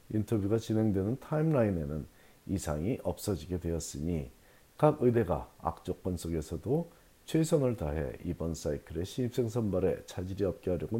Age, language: 40-59, Korean